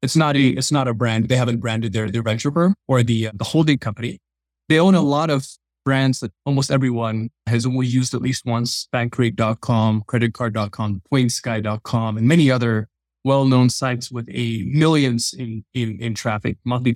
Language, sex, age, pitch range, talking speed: English, male, 20-39, 115-135 Hz, 180 wpm